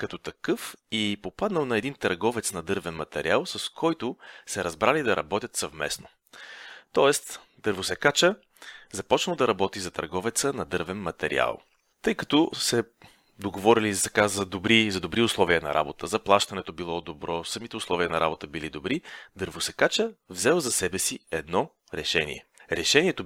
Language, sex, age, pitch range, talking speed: Bulgarian, male, 30-49, 90-125 Hz, 140 wpm